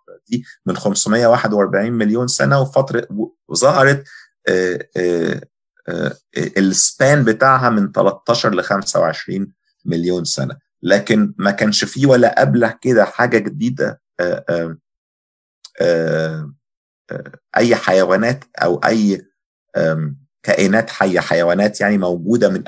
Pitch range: 90-125 Hz